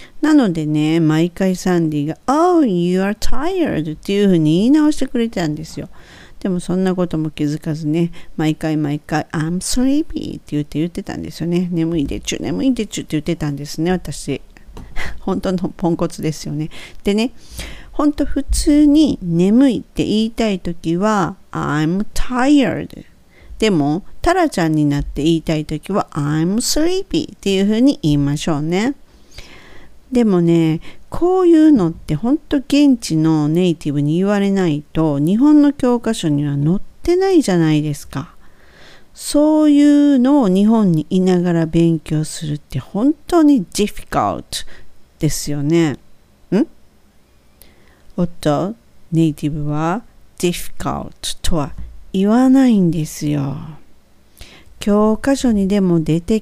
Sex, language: female, Japanese